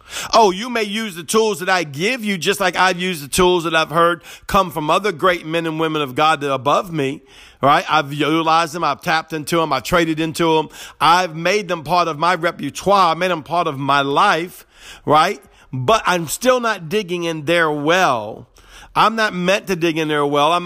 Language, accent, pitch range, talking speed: English, American, 155-195 Hz, 220 wpm